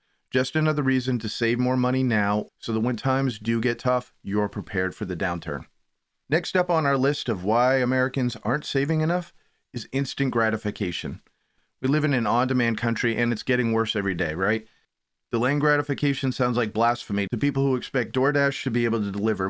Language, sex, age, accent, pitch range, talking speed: English, male, 30-49, American, 115-140 Hz, 190 wpm